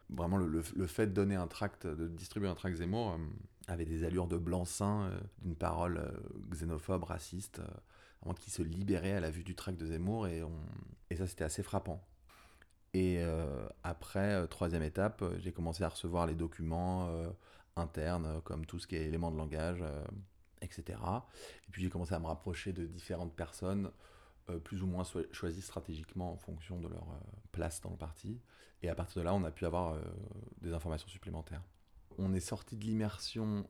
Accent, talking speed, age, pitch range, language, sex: French, 200 wpm, 30-49, 85-100 Hz, French, male